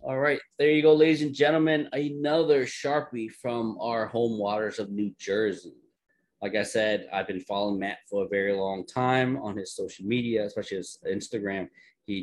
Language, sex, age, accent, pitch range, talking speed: English, male, 30-49, American, 95-125 Hz, 180 wpm